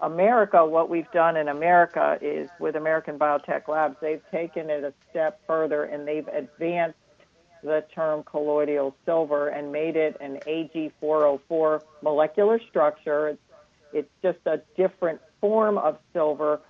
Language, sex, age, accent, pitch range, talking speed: English, female, 50-69, American, 150-185 Hz, 140 wpm